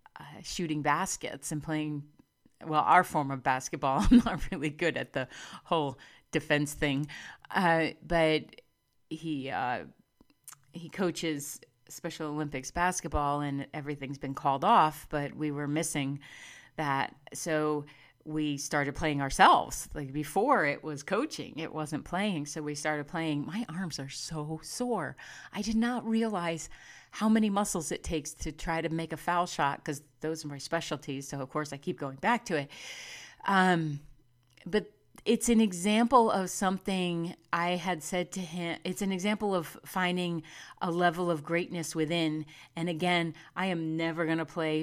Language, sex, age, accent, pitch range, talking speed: English, female, 40-59, American, 150-180 Hz, 160 wpm